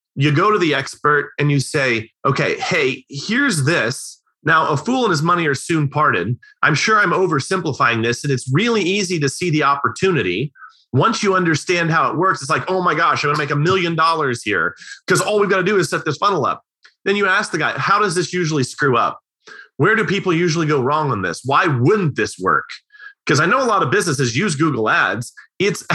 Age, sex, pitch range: 30-49, male, 125-180 Hz